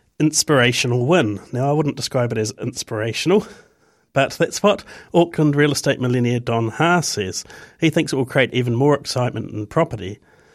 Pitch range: 120-155 Hz